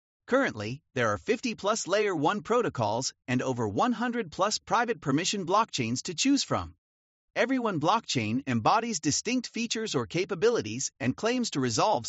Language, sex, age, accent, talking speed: English, male, 40-59, American, 140 wpm